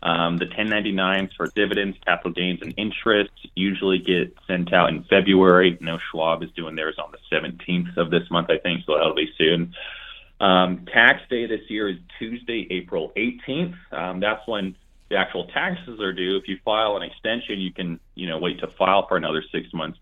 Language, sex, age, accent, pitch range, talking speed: English, male, 30-49, American, 90-105 Hz, 200 wpm